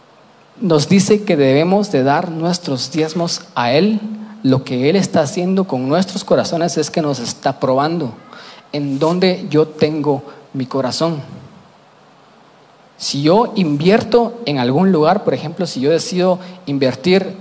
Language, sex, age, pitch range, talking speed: Spanish, male, 40-59, 145-195 Hz, 140 wpm